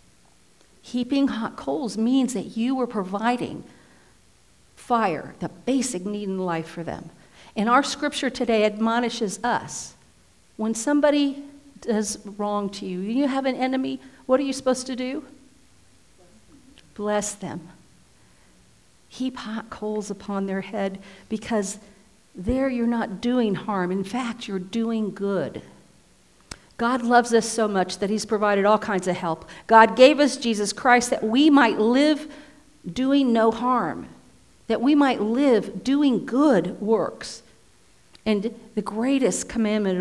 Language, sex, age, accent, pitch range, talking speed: English, female, 50-69, American, 185-250 Hz, 140 wpm